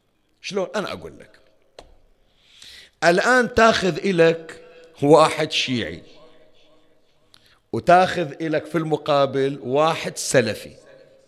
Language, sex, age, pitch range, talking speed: Arabic, male, 50-69, 140-215 Hz, 80 wpm